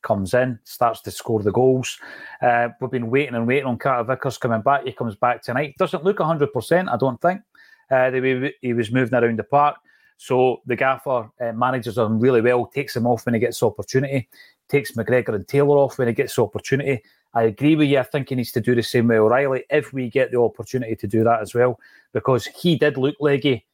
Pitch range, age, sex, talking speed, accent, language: 120-145 Hz, 30-49, male, 225 wpm, British, English